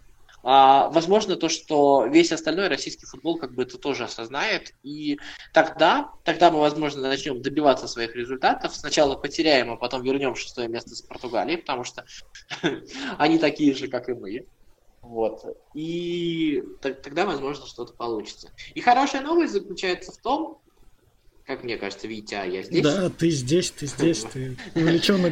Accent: native